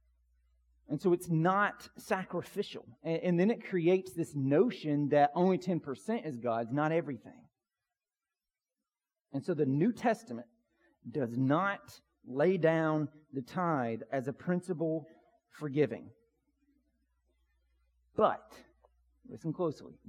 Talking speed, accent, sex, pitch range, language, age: 115 wpm, American, male, 115-185 Hz, English, 40-59